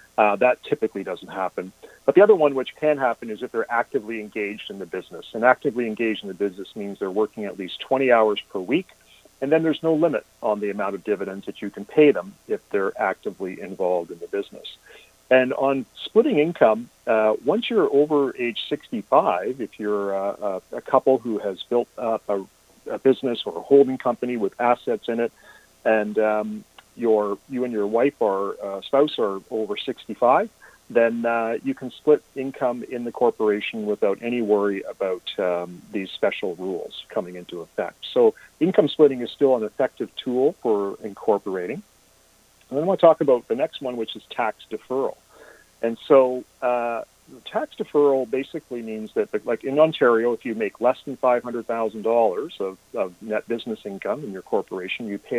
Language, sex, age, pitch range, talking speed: English, male, 40-59, 105-140 Hz, 185 wpm